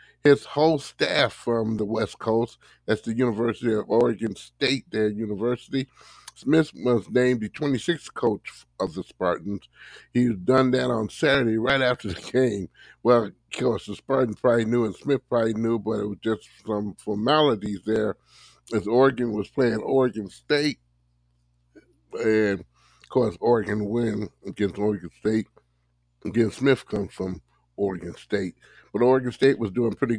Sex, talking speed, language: male, 155 wpm, English